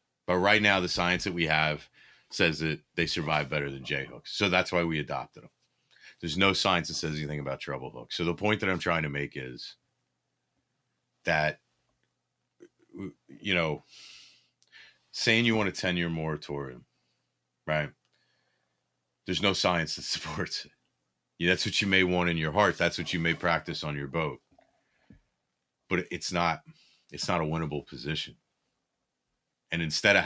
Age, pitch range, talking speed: 30-49, 75-90 Hz, 165 wpm